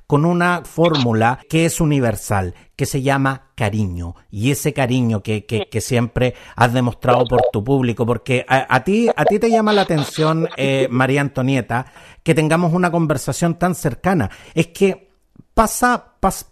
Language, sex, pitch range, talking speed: Spanish, male, 130-190 Hz, 165 wpm